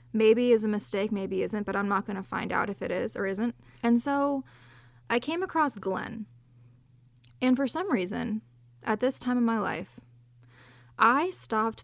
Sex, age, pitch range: female, 20-39, 180-235 Hz